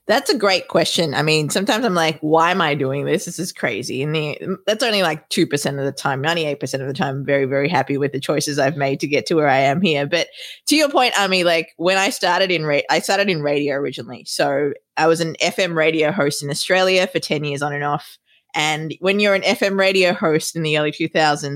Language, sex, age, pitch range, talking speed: English, female, 20-39, 150-190 Hz, 245 wpm